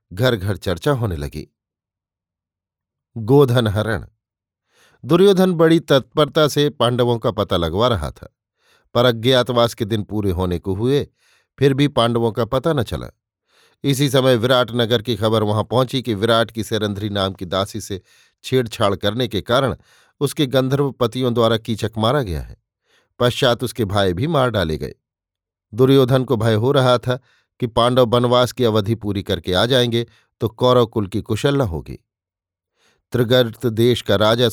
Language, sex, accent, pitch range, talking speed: Hindi, male, native, 105-130 Hz, 160 wpm